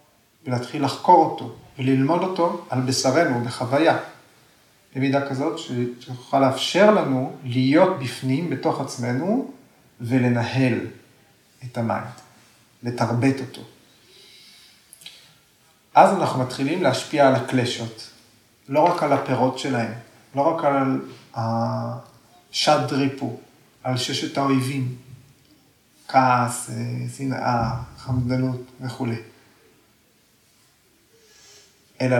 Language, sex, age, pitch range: Hebrew, male, 40-59, 125-155 Hz